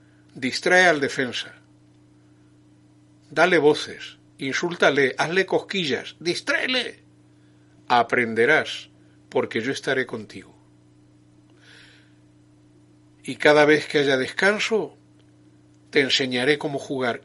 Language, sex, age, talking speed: Spanish, male, 60-79, 85 wpm